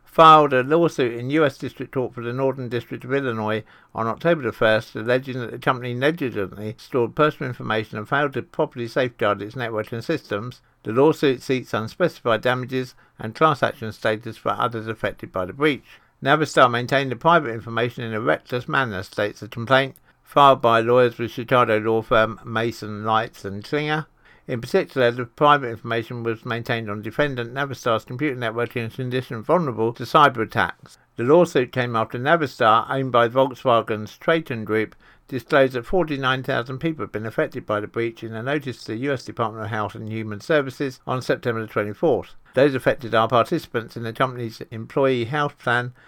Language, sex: English, male